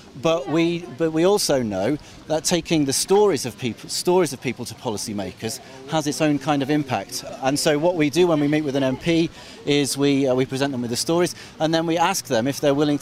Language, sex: English, male